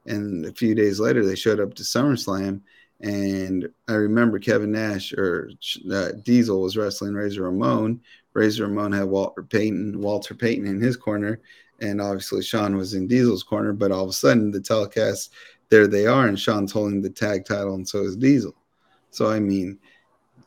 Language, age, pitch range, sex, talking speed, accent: English, 30-49, 100-125 Hz, male, 180 wpm, American